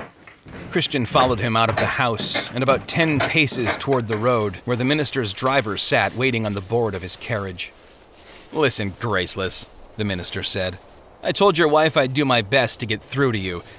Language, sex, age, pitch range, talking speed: English, male, 30-49, 105-150 Hz, 190 wpm